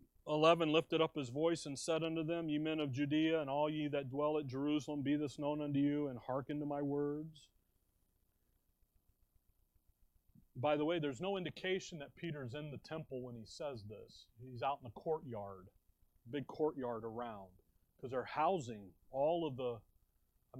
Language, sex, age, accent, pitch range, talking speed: English, male, 40-59, American, 110-150 Hz, 180 wpm